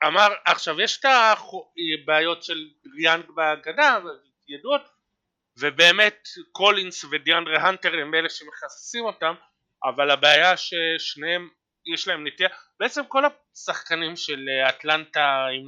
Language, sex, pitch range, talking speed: Hebrew, male, 145-180 Hz, 110 wpm